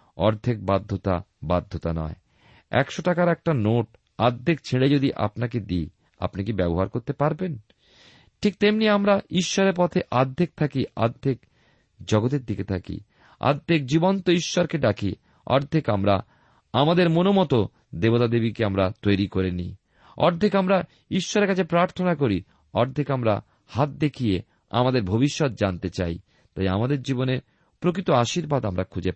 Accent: native